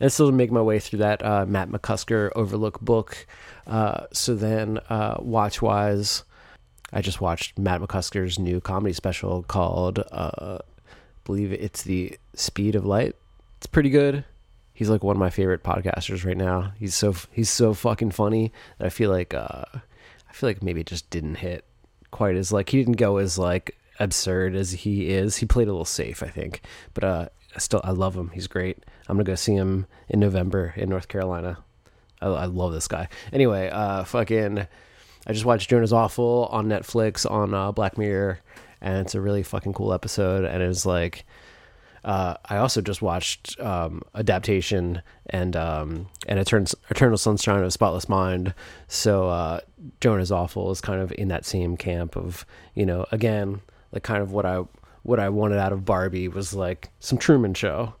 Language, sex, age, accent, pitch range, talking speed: English, male, 20-39, American, 90-110 Hz, 185 wpm